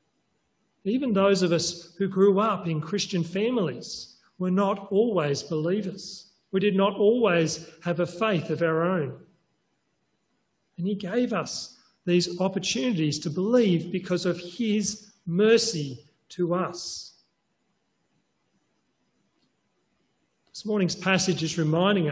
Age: 40-59